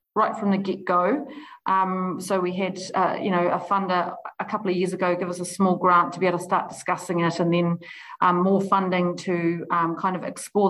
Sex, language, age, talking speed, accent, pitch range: female, English, 40-59, 230 wpm, Australian, 175-200 Hz